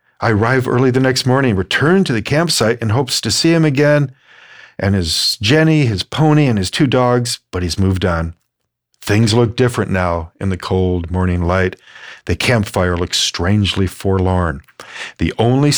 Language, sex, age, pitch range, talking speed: English, male, 50-69, 85-110 Hz, 170 wpm